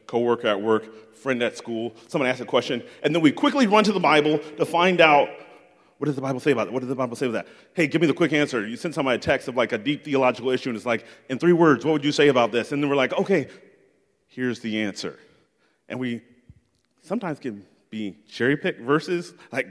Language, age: English, 30-49